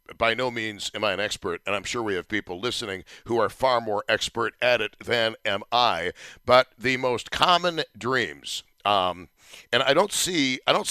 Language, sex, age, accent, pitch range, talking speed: English, male, 50-69, American, 110-140 Hz, 200 wpm